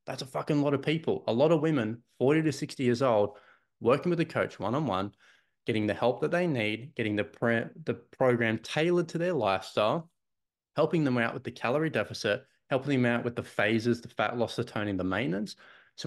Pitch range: 120-150 Hz